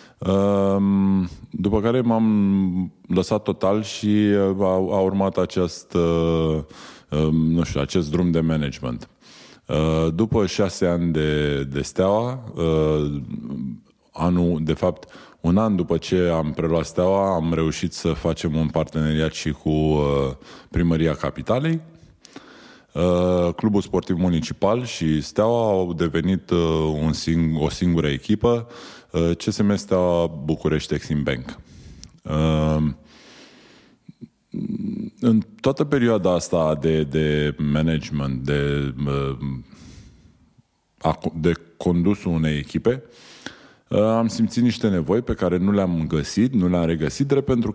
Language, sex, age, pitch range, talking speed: Romanian, male, 20-39, 80-100 Hz, 115 wpm